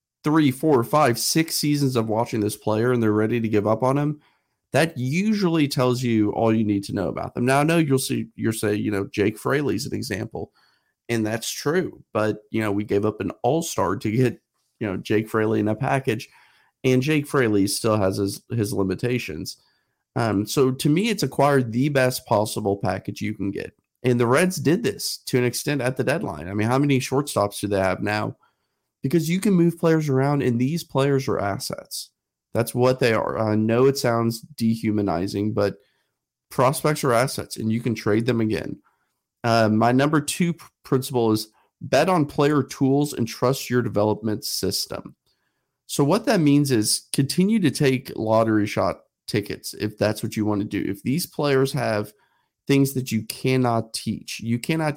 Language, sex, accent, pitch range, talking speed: English, male, American, 105-140 Hz, 190 wpm